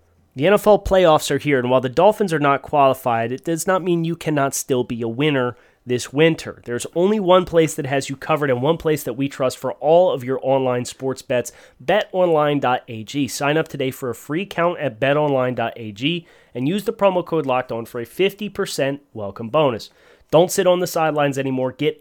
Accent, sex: American, male